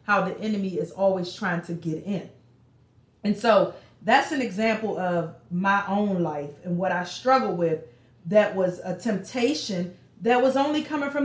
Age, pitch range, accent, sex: 30-49, 180-235 Hz, American, female